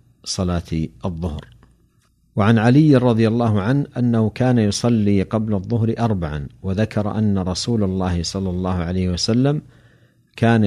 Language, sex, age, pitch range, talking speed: Arabic, male, 50-69, 95-120 Hz, 125 wpm